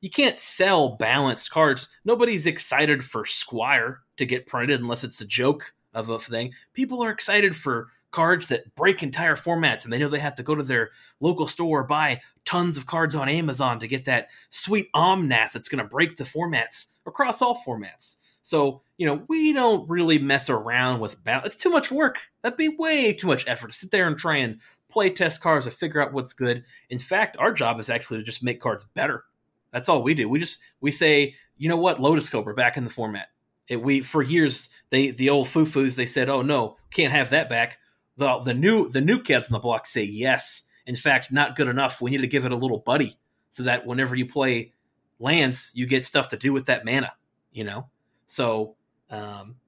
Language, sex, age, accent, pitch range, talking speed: English, male, 30-49, American, 125-160 Hz, 220 wpm